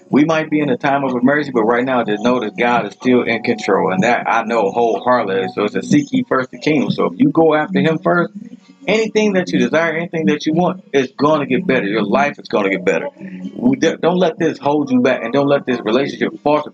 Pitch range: 130-170 Hz